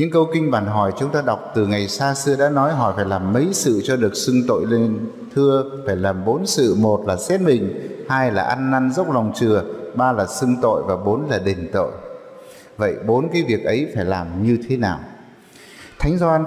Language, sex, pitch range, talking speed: Vietnamese, male, 105-145 Hz, 220 wpm